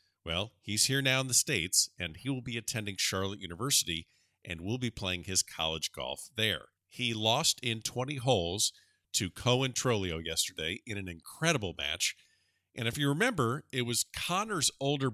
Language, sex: English, male